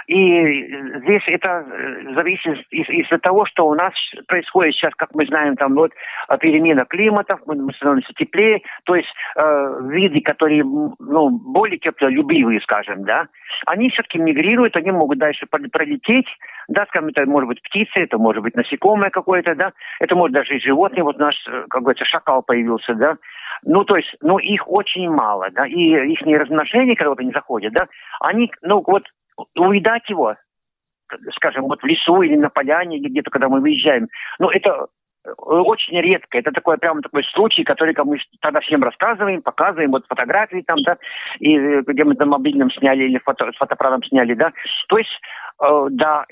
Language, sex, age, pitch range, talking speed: Russian, male, 50-69, 145-230 Hz, 170 wpm